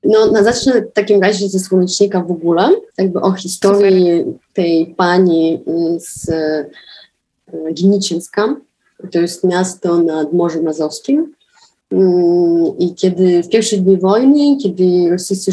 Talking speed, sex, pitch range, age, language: 115 wpm, female, 165-200 Hz, 30-49, Polish